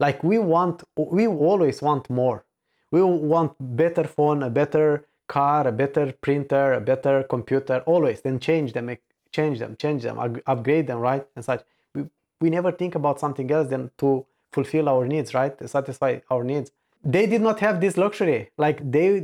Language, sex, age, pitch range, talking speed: English, male, 20-39, 145-180 Hz, 180 wpm